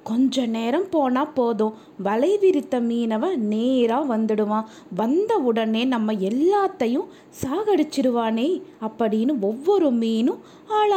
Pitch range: 225-320 Hz